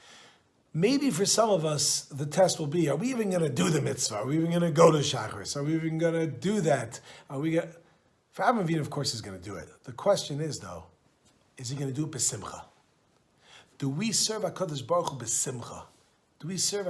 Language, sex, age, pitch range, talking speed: English, male, 40-59, 130-185 Hz, 215 wpm